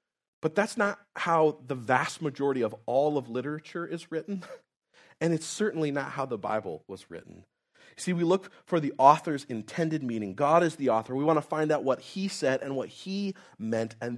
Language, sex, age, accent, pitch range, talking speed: English, male, 30-49, American, 120-165 Hz, 200 wpm